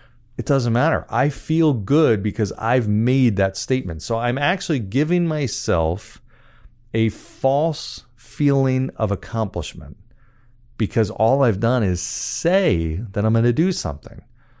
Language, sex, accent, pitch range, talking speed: English, male, American, 105-135 Hz, 135 wpm